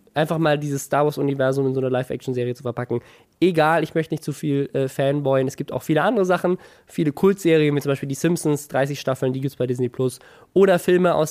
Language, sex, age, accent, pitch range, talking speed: German, male, 20-39, German, 130-160 Hz, 225 wpm